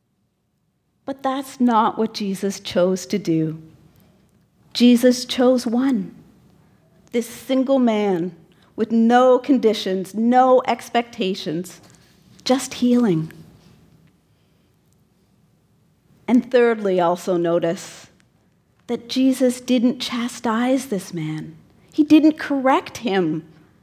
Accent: American